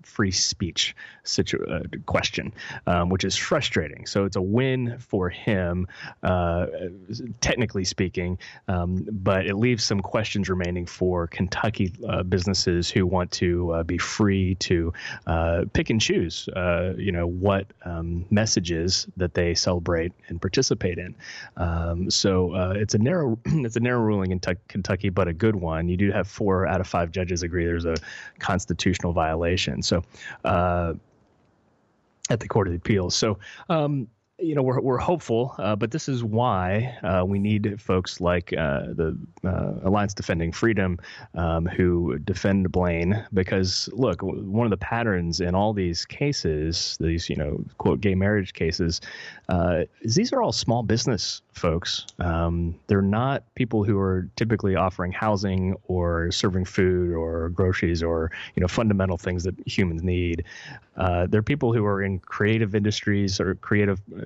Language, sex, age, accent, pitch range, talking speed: English, male, 30-49, American, 90-105 Hz, 160 wpm